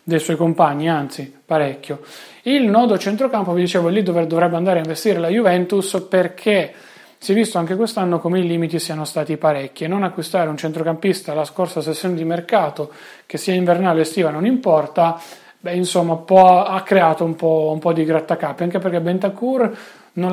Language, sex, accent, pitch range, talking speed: Italian, male, native, 155-185 Hz, 180 wpm